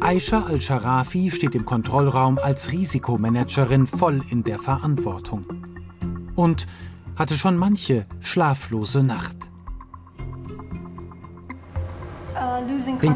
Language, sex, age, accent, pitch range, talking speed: German, male, 40-59, German, 120-155 Hz, 80 wpm